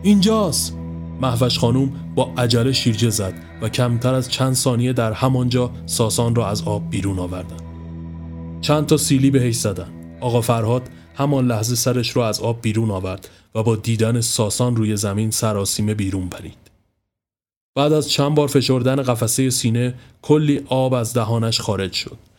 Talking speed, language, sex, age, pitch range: 155 wpm, Persian, male, 30-49, 105-135 Hz